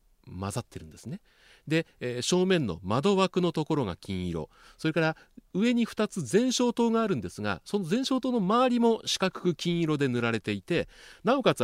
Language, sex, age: Japanese, male, 40-59